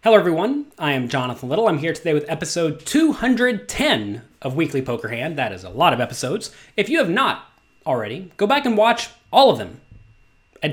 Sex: male